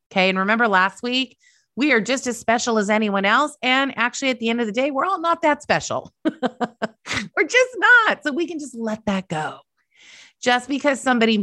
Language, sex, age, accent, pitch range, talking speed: English, female, 30-49, American, 180-255 Hz, 205 wpm